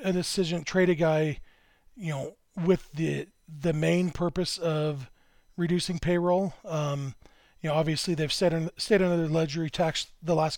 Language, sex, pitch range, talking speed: English, male, 155-175 Hz, 165 wpm